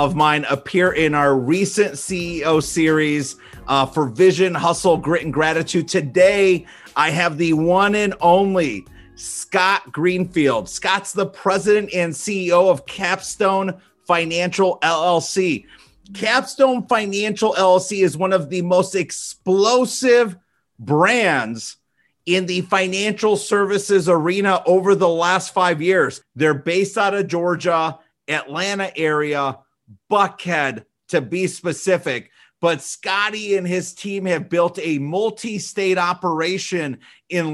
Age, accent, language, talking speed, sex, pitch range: 30-49, American, English, 120 wpm, male, 155-190 Hz